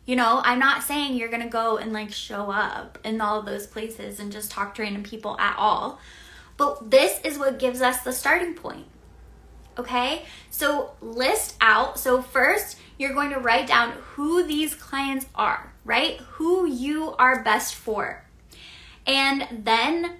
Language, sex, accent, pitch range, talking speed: English, female, American, 230-290 Hz, 170 wpm